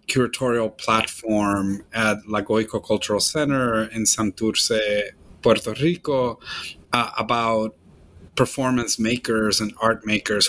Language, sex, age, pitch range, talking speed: English, male, 30-49, 110-130 Hz, 95 wpm